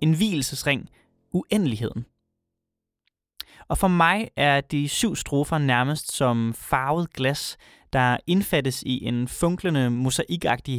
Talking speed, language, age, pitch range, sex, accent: 110 wpm, Danish, 20-39, 125-165 Hz, male, native